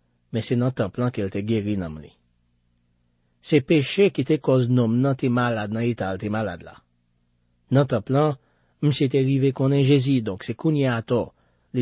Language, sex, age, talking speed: French, male, 40-59, 170 wpm